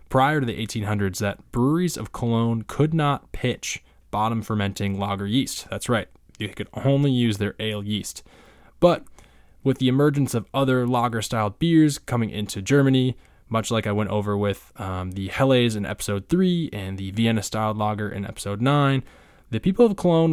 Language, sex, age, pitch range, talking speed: English, male, 20-39, 100-130 Hz, 170 wpm